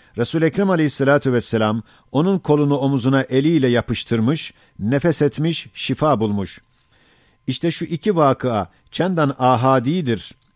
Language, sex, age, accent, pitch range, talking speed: Turkish, male, 50-69, native, 120-150 Hz, 110 wpm